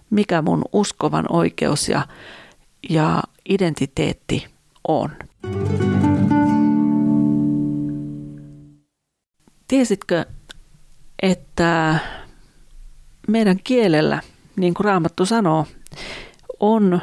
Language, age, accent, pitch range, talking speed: Finnish, 40-59, native, 150-190 Hz, 60 wpm